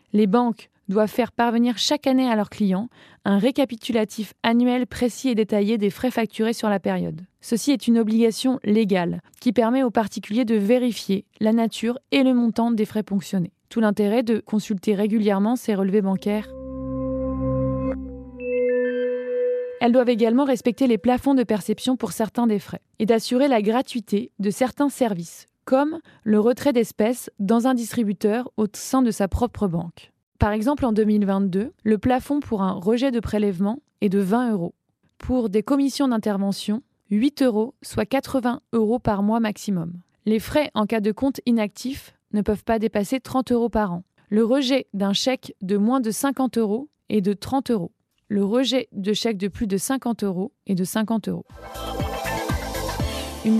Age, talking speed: 20-39, 170 wpm